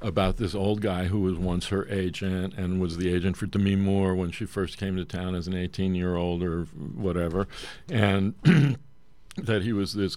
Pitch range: 90-110 Hz